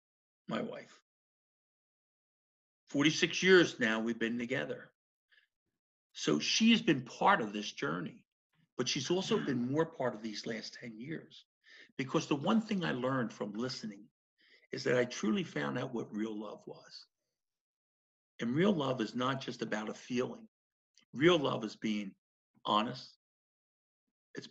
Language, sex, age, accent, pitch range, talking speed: English, male, 60-79, American, 115-185 Hz, 145 wpm